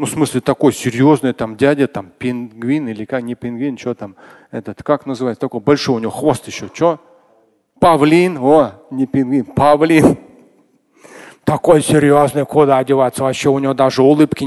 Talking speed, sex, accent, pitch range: 160 wpm, male, native, 130-205 Hz